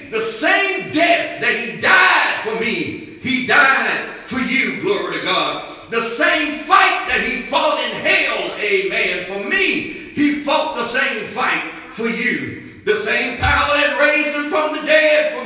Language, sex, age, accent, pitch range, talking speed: English, male, 50-69, American, 230-330 Hz, 165 wpm